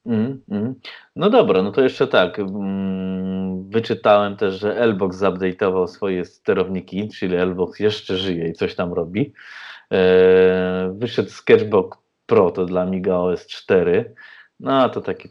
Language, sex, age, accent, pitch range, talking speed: Polish, male, 30-49, native, 95-105 Hz, 145 wpm